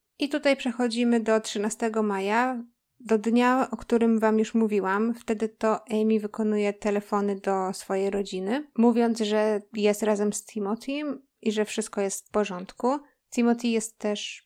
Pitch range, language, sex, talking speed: 210-245 Hz, Polish, female, 150 wpm